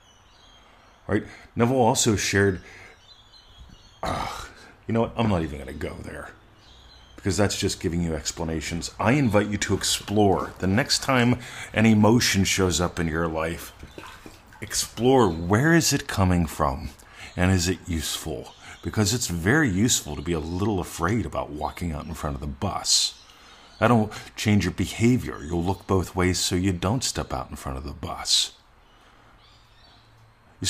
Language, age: English, 40-59